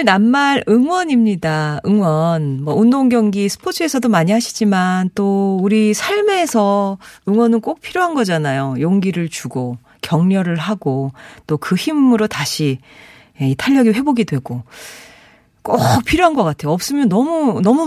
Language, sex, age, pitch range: Korean, female, 40-59, 150-235 Hz